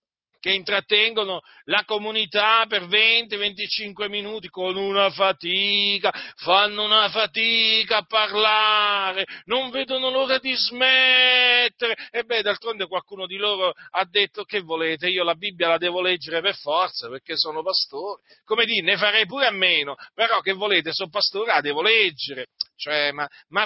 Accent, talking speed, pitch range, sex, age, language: native, 150 wpm, 195-250 Hz, male, 40-59, Italian